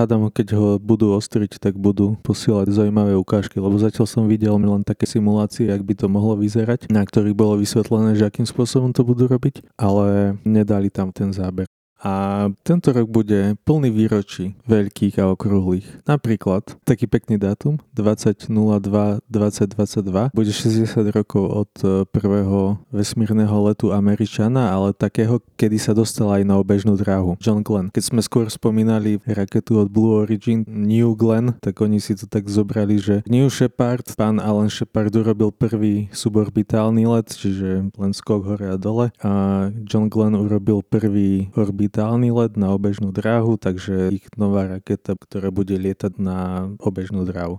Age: 20-39